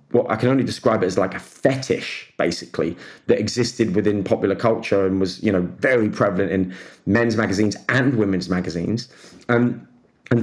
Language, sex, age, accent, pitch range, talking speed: English, male, 30-49, British, 100-120 Hz, 165 wpm